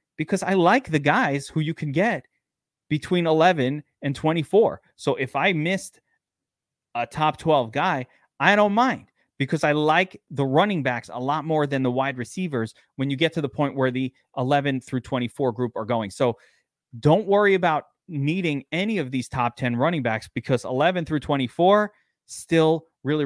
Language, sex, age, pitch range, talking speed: English, male, 30-49, 130-155 Hz, 180 wpm